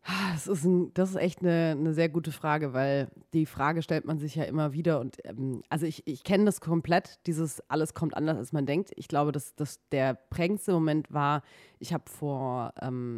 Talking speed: 215 wpm